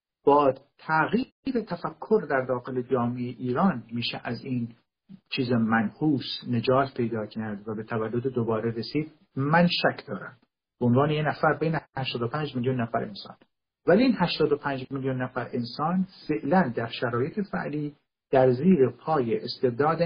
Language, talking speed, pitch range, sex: Persian, 140 wpm, 125-170 Hz, male